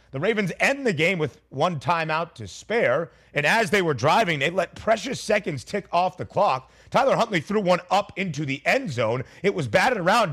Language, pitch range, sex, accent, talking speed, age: English, 130-175 Hz, male, American, 210 wpm, 30-49